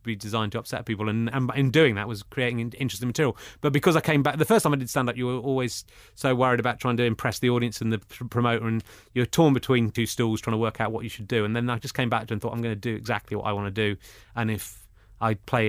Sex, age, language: male, 30-49, English